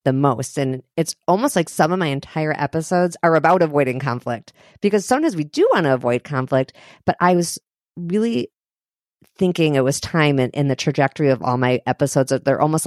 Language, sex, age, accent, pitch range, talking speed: English, female, 40-59, American, 130-170 Hz, 190 wpm